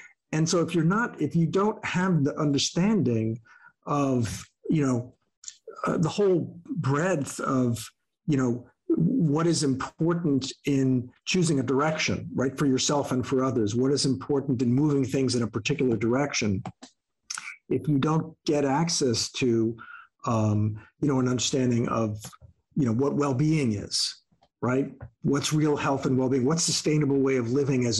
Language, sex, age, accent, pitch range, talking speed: English, male, 50-69, American, 125-155 Hz, 155 wpm